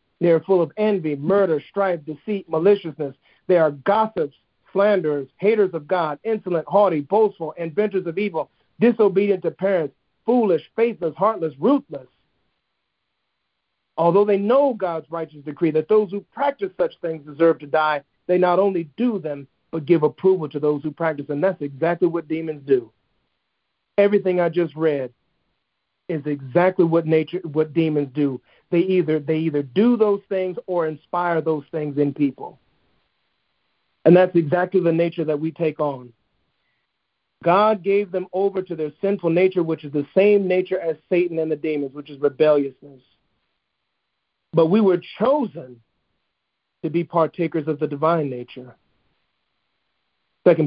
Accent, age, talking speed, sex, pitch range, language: American, 50-69, 155 wpm, male, 150-190 Hz, English